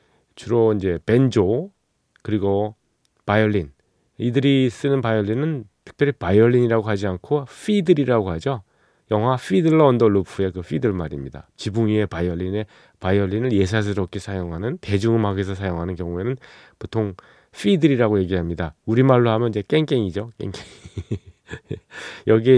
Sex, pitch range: male, 95-120 Hz